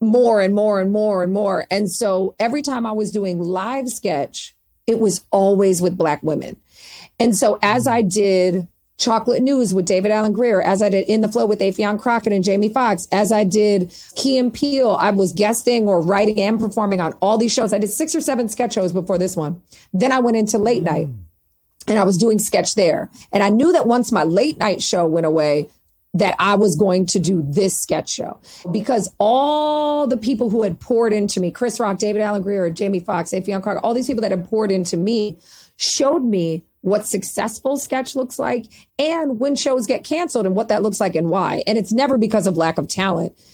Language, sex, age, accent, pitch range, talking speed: English, female, 40-59, American, 185-235 Hz, 215 wpm